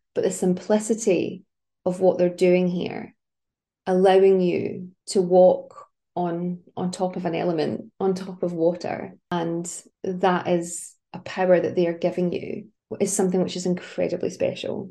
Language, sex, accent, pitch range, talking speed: English, female, British, 175-190 Hz, 155 wpm